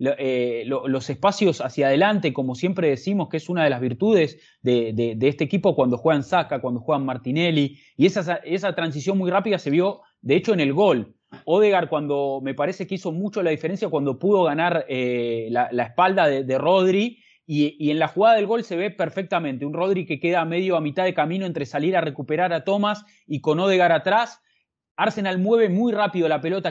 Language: English